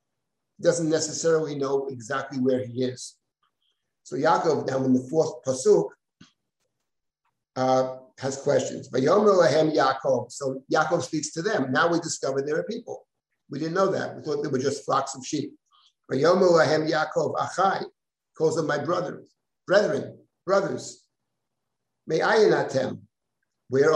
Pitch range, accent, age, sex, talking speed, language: 130-165 Hz, American, 50-69, male, 120 wpm, English